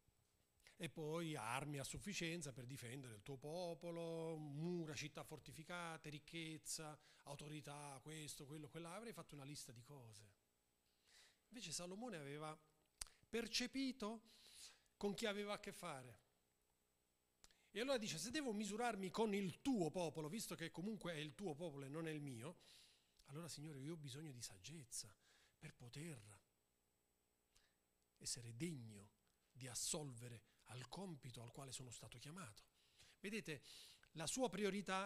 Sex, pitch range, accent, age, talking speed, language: male, 120-185 Hz, native, 40-59, 135 wpm, Italian